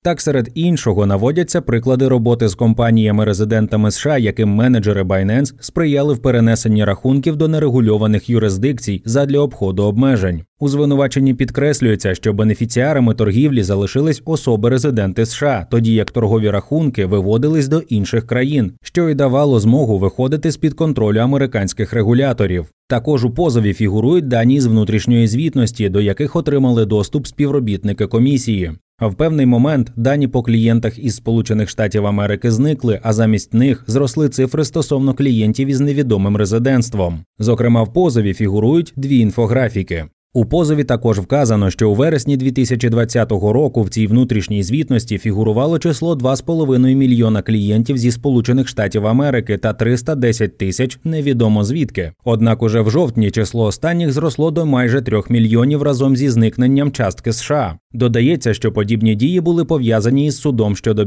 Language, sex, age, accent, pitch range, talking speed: Ukrainian, male, 20-39, native, 110-140 Hz, 140 wpm